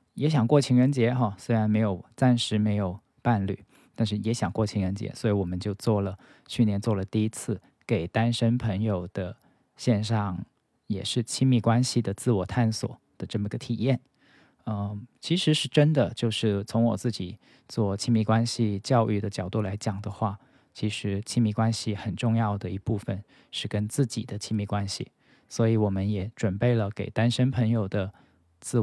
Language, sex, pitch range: Chinese, male, 100-120 Hz